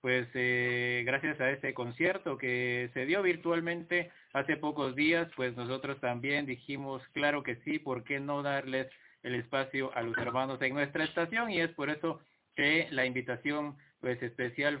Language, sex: Spanish, male